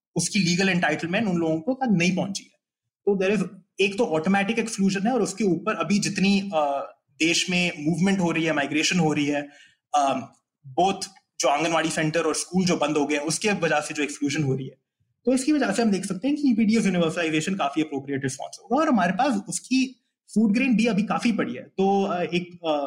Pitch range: 160-205 Hz